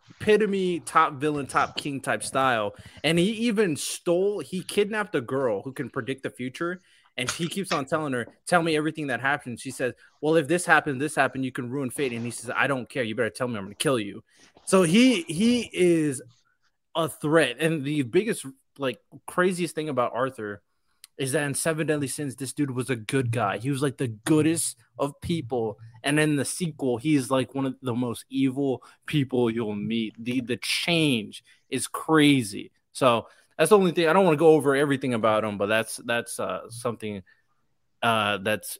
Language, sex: English, male